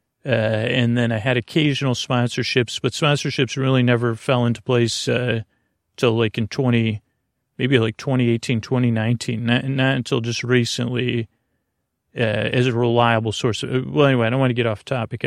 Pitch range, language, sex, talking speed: 115-130 Hz, English, male, 170 wpm